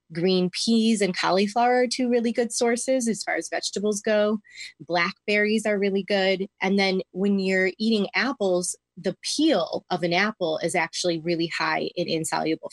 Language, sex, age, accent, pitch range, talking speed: English, female, 20-39, American, 170-210 Hz, 165 wpm